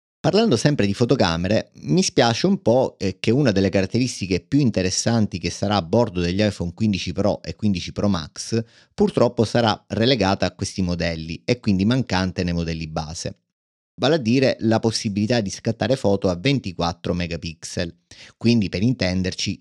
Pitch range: 90-115 Hz